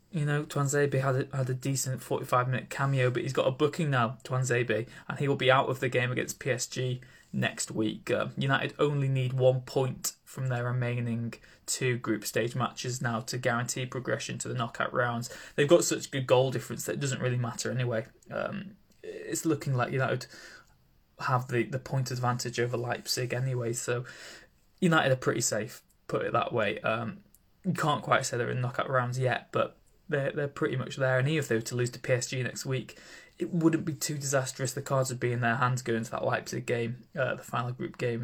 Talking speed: 205 wpm